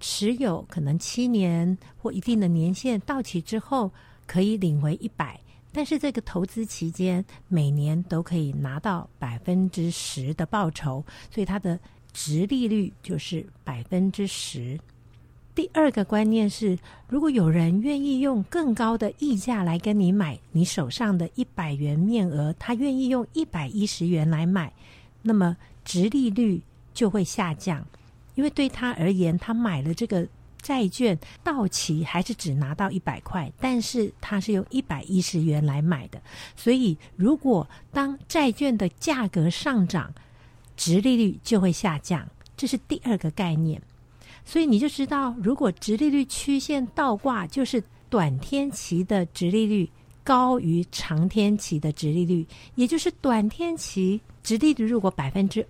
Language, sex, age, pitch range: Chinese, female, 60-79, 160-235 Hz